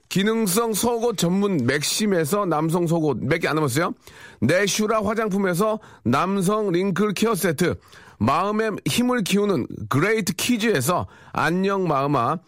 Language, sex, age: Korean, male, 40-59